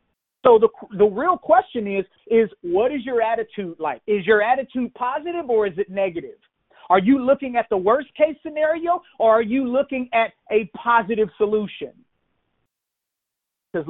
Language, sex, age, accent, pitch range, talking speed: English, male, 40-59, American, 175-245 Hz, 155 wpm